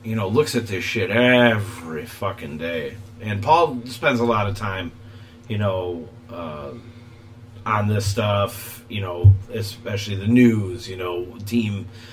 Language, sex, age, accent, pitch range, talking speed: English, male, 30-49, American, 105-120 Hz, 150 wpm